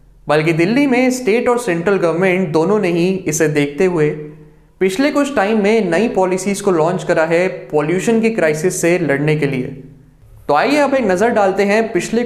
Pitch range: 155-205 Hz